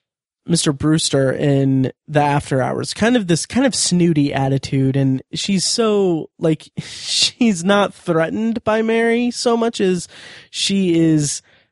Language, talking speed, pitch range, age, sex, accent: English, 140 wpm, 140-180 Hz, 20-39, male, American